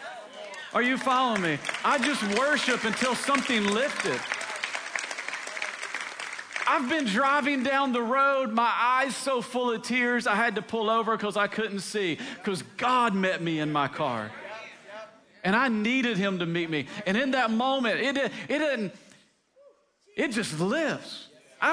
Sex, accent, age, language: male, American, 40-59, English